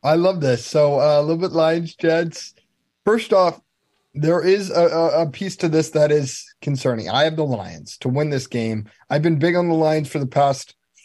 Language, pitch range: English, 130-160 Hz